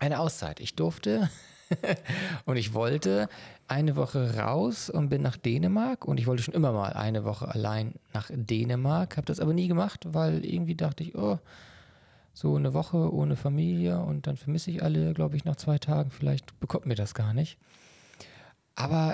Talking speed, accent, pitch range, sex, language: 180 wpm, German, 120-160 Hz, male, German